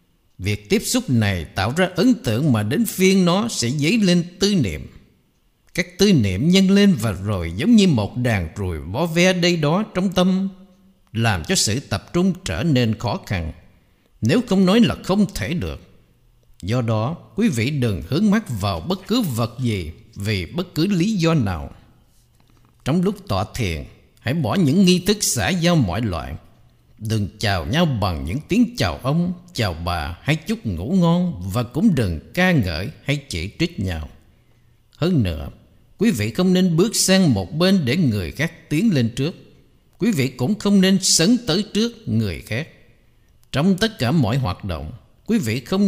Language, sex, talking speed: Vietnamese, male, 185 wpm